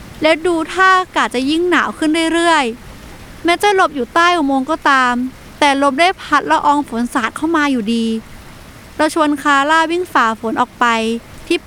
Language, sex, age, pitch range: Thai, female, 20-39, 255-340 Hz